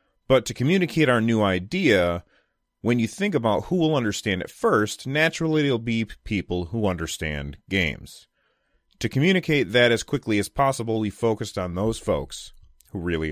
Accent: American